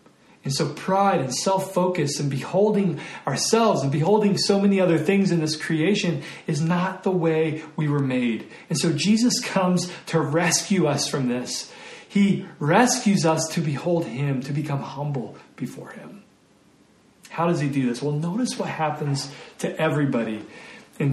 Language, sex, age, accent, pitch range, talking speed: English, male, 40-59, American, 130-170 Hz, 160 wpm